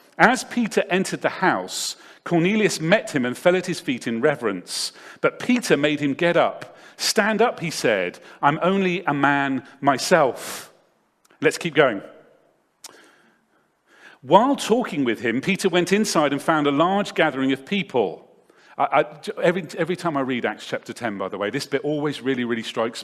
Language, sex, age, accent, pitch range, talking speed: English, male, 40-59, British, 140-200 Hz, 170 wpm